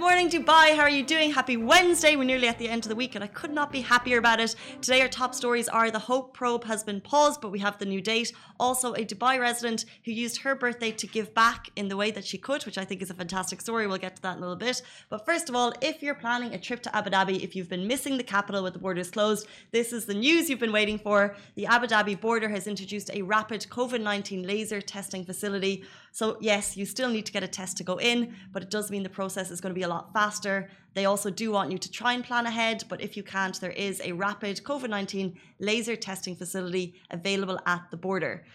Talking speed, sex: 260 wpm, female